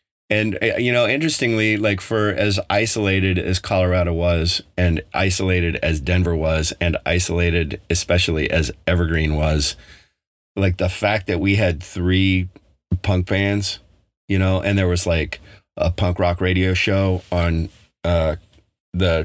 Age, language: 30-49, English